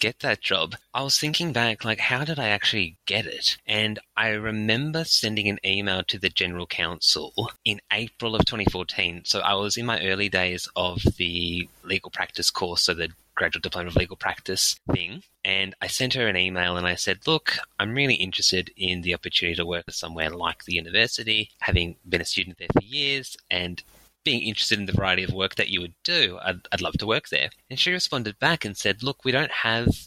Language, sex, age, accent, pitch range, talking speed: English, male, 20-39, Australian, 90-120 Hz, 210 wpm